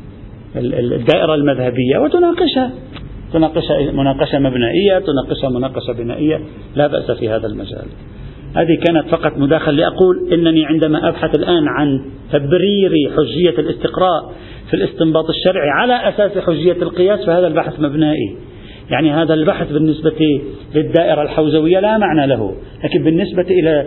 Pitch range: 135-180 Hz